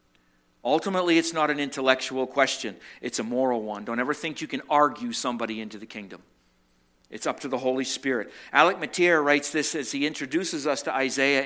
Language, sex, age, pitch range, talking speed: English, male, 50-69, 125-165 Hz, 190 wpm